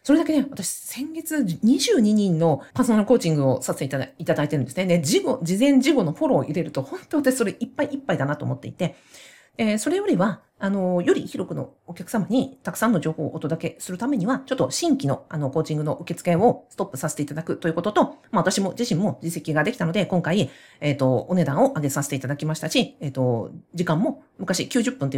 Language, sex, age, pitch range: Japanese, female, 40-59, 150-235 Hz